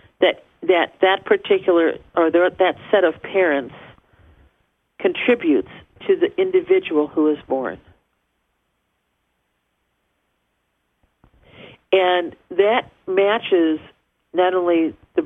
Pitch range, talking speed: 150-215 Hz, 85 wpm